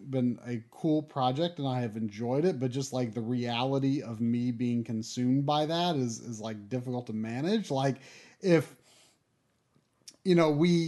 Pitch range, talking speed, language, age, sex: 120-155 Hz, 170 wpm, English, 30-49, male